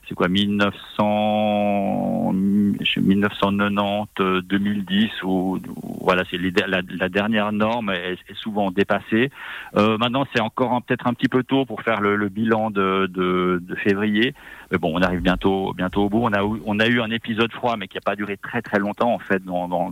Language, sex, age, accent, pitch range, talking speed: French, male, 40-59, French, 90-110 Hz, 175 wpm